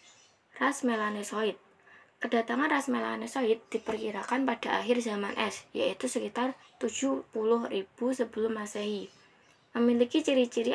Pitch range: 210-245 Hz